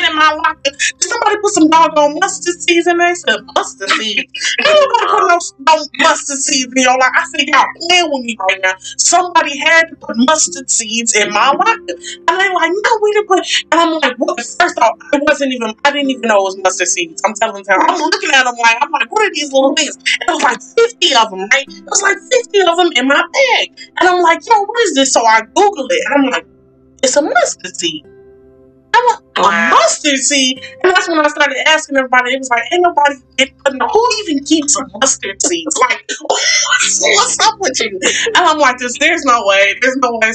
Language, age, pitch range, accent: English, 30-49, 230-340 Hz, American